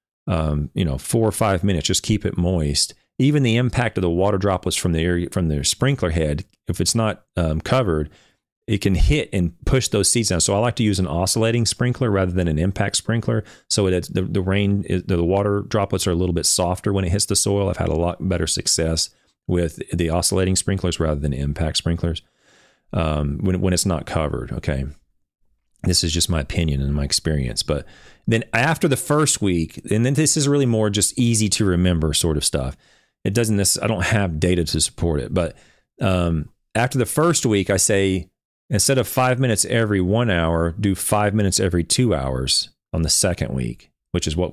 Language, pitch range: English, 80-110 Hz